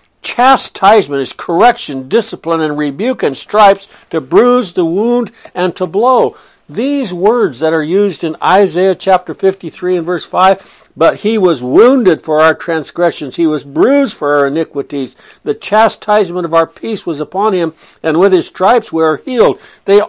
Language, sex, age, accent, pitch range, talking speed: English, male, 60-79, American, 165-210 Hz, 165 wpm